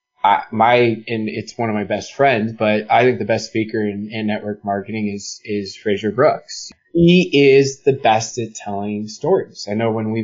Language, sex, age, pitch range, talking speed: English, male, 20-39, 110-155 Hz, 195 wpm